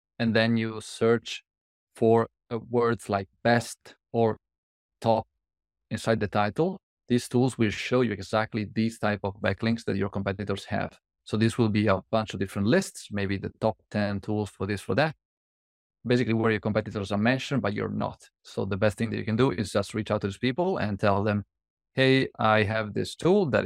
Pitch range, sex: 100-115 Hz, male